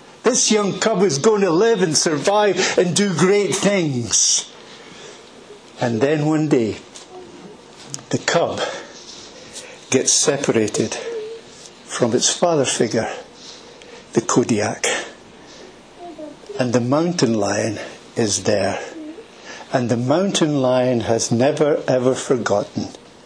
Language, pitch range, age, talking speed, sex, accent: English, 120-195 Hz, 60-79, 105 wpm, male, British